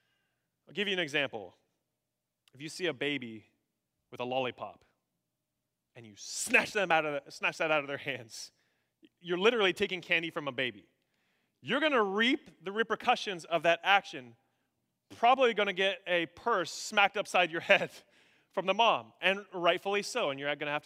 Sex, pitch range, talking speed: male, 140-200 Hz, 180 wpm